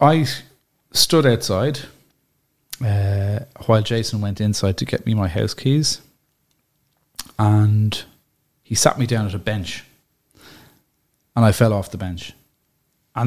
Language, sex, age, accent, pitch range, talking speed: English, male, 30-49, Irish, 100-135 Hz, 130 wpm